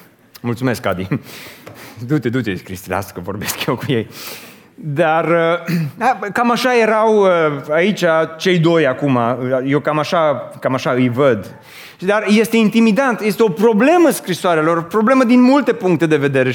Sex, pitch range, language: male, 160-225 Hz, Romanian